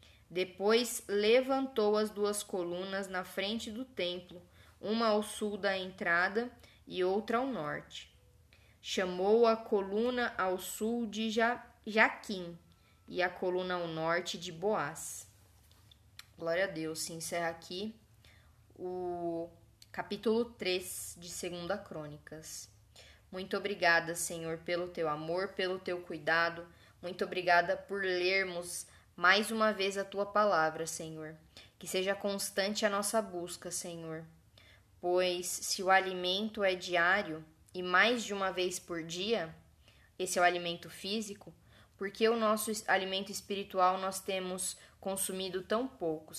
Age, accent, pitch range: 10-29, Brazilian, 165-200 Hz